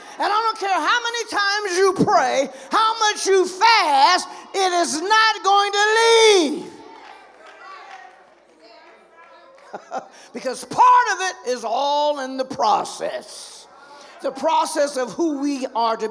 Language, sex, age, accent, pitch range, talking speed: English, male, 50-69, American, 235-375 Hz, 130 wpm